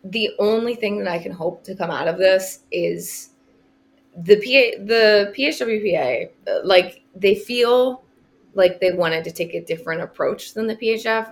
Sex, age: female, 20-39